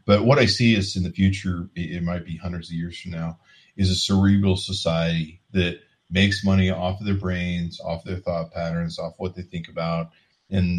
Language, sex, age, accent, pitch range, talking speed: English, male, 30-49, American, 85-100 Hz, 205 wpm